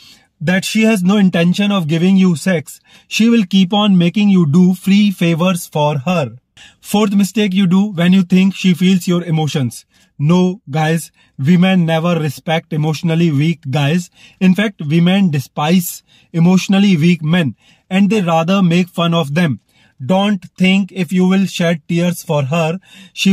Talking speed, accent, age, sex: 160 wpm, Indian, 30-49, male